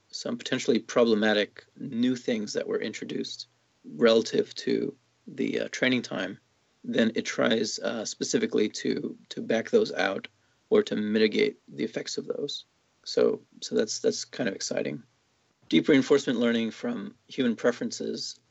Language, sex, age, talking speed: English, male, 30-49, 145 wpm